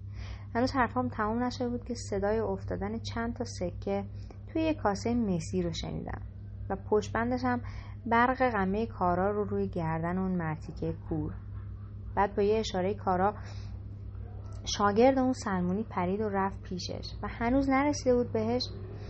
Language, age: English, 30-49